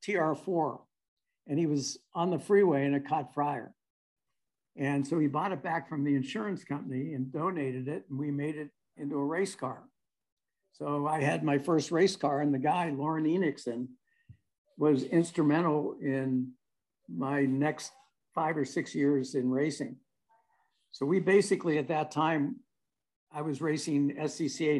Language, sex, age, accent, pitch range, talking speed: English, male, 60-79, American, 130-160 Hz, 155 wpm